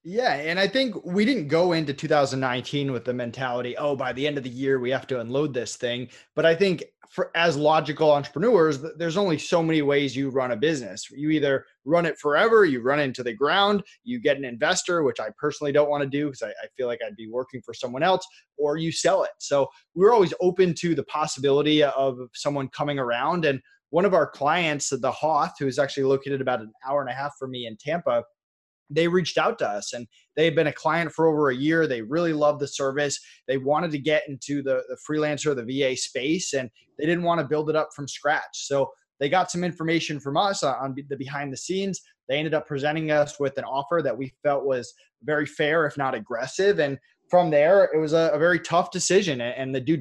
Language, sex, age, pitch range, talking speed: English, male, 20-39, 135-165 Hz, 230 wpm